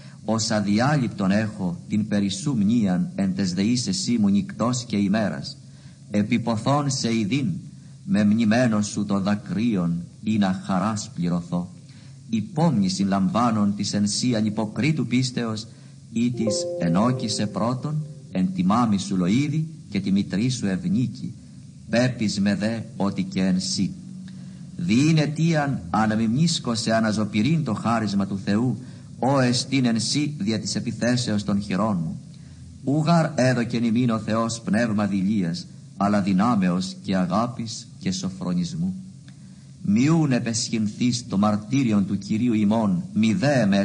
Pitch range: 105-155 Hz